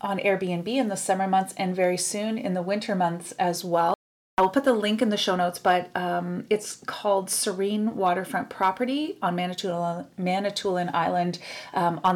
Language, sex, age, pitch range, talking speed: English, female, 30-49, 175-210 Hz, 180 wpm